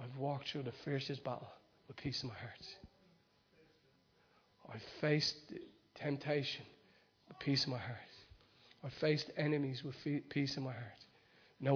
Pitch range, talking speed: 140-195 Hz, 150 wpm